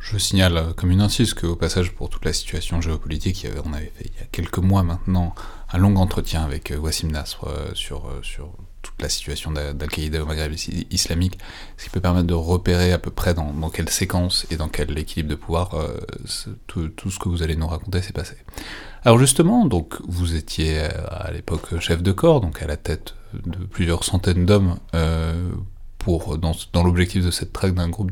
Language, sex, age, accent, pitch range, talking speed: French, male, 30-49, French, 85-100 Hz, 200 wpm